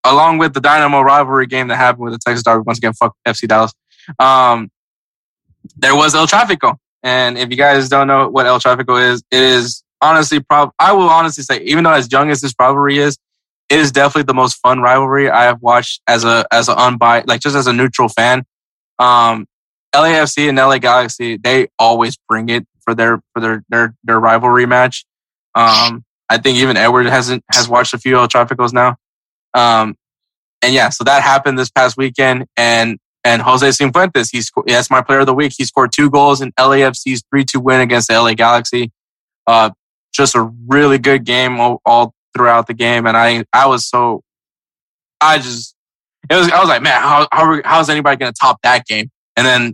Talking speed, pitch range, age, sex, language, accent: 205 wpm, 115-135 Hz, 20-39, male, English, American